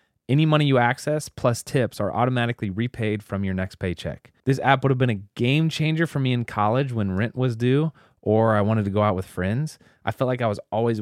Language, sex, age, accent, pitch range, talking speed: English, male, 20-39, American, 100-125 Hz, 235 wpm